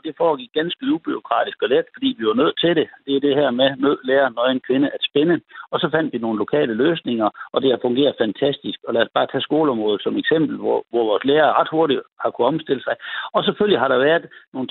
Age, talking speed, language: 60-79, 245 wpm, Danish